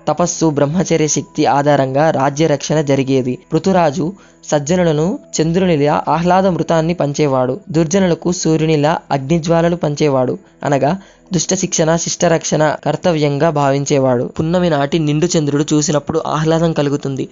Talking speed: 95 wpm